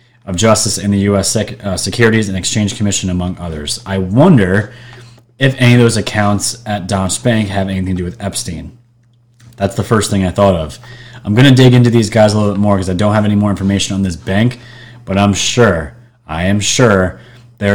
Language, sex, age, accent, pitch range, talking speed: English, male, 30-49, American, 100-120 Hz, 215 wpm